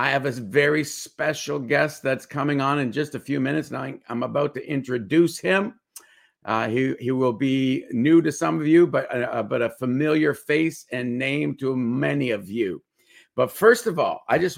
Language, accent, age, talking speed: English, American, 50-69, 200 wpm